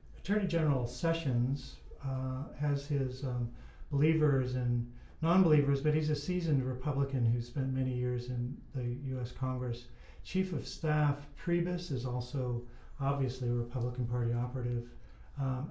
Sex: male